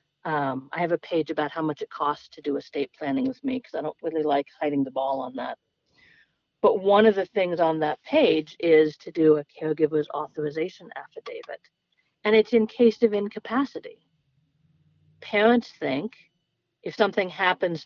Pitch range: 155-220 Hz